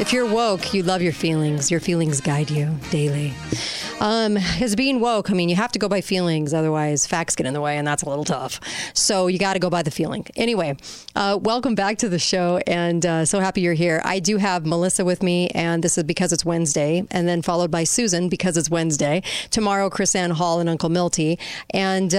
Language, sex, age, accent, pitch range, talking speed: English, female, 40-59, American, 170-195 Hz, 225 wpm